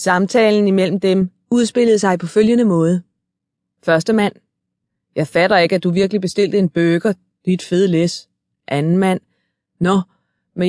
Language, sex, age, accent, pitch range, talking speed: Danish, female, 20-39, native, 175-220 Hz, 145 wpm